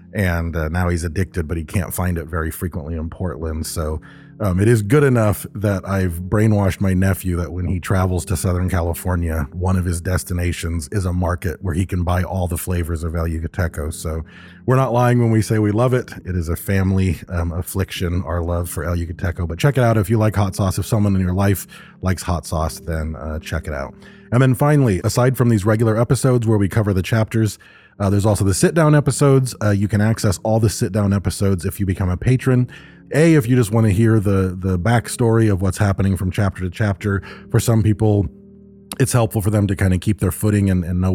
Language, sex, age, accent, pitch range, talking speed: English, male, 30-49, American, 90-110 Hz, 230 wpm